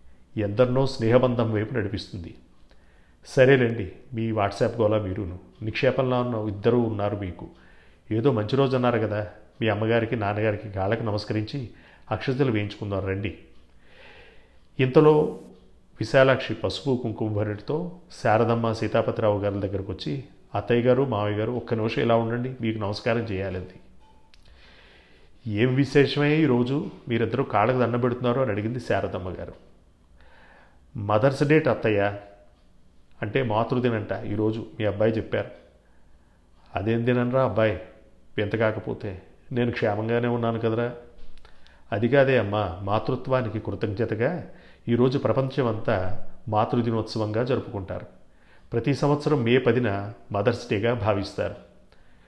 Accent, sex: native, male